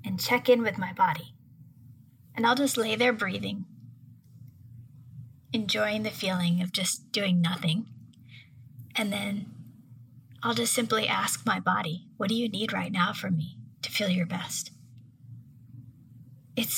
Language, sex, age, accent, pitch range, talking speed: English, female, 30-49, American, 120-205 Hz, 145 wpm